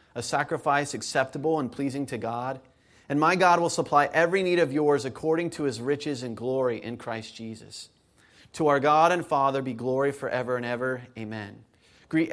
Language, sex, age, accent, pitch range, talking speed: English, male, 30-49, American, 125-155 Hz, 180 wpm